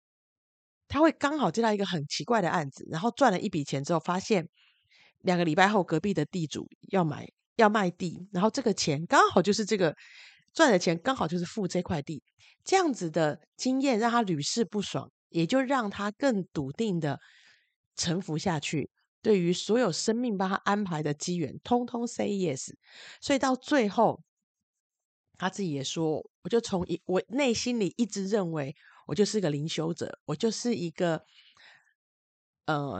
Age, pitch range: 30-49, 160-235 Hz